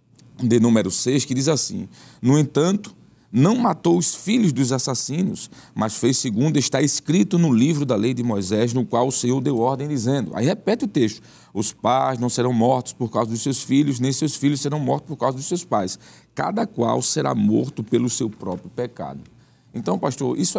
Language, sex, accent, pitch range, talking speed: Portuguese, male, Brazilian, 115-150 Hz, 195 wpm